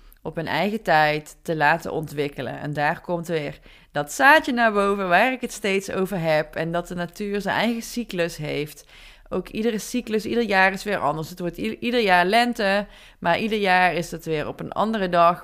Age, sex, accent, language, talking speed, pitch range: 20-39, female, Dutch, Dutch, 205 wpm, 170-220 Hz